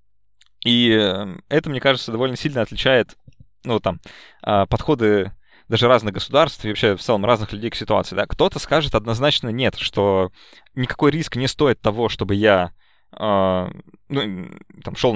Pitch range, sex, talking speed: 100-125 Hz, male, 145 wpm